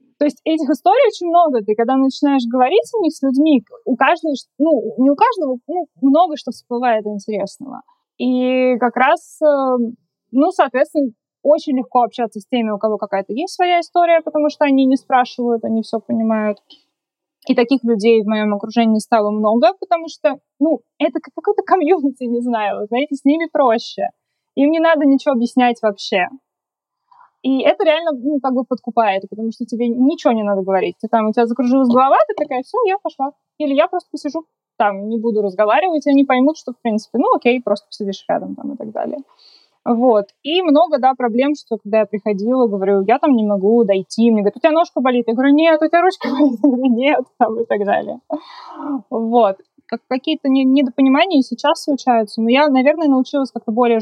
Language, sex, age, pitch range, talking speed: Russian, female, 20-39, 230-305 Hz, 185 wpm